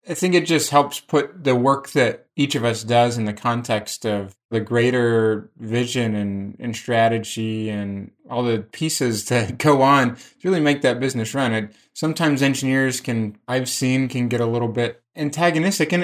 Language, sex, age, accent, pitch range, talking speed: English, male, 20-39, American, 115-140 Hz, 175 wpm